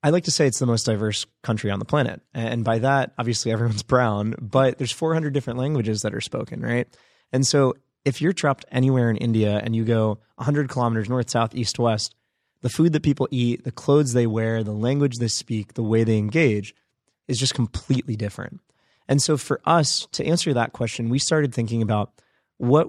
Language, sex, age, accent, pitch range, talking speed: English, male, 20-39, American, 110-130 Hz, 205 wpm